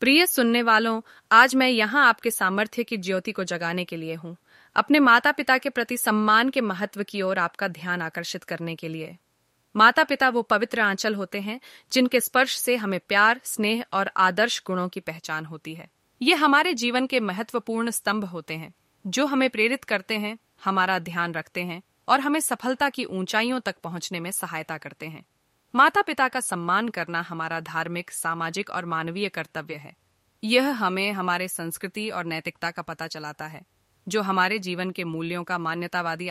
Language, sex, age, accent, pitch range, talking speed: Hindi, female, 30-49, native, 160-215 Hz, 180 wpm